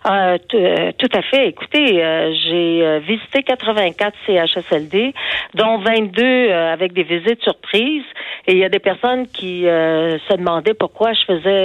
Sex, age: female, 50-69